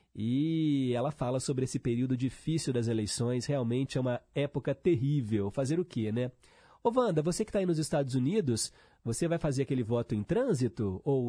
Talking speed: 185 wpm